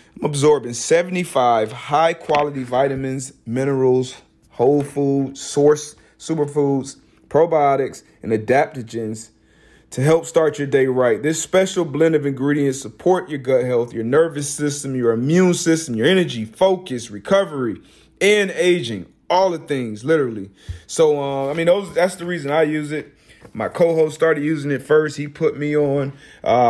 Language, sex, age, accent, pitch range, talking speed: English, male, 30-49, American, 125-160 Hz, 150 wpm